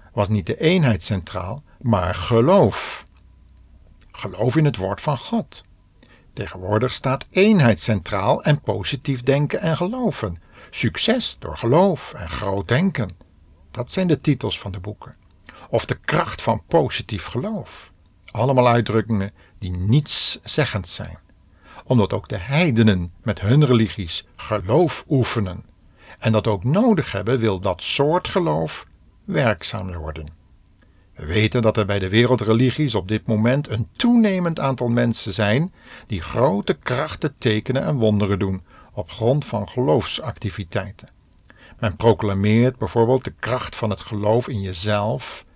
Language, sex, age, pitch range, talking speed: Dutch, male, 50-69, 95-125 Hz, 135 wpm